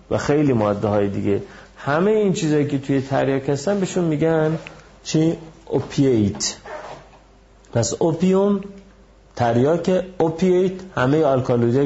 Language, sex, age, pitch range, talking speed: Persian, male, 40-59, 110-165 Hz, 105 wpm